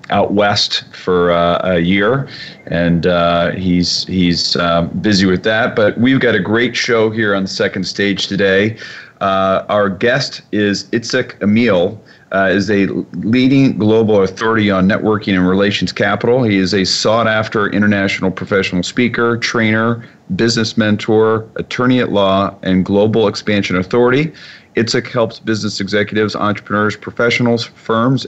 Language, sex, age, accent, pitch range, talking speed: English, male, 40-59, American, 95-110 Hz, 140 wpm